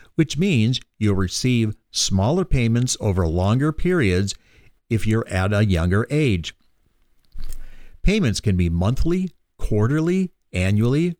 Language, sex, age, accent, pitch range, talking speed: English, male, 50-69, American, 95-135 Hz, 115 wpm